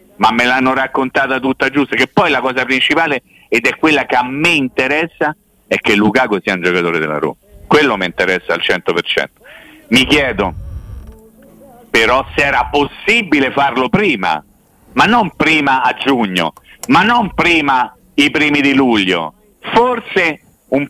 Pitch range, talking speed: 105-170 Hz, 150 wpm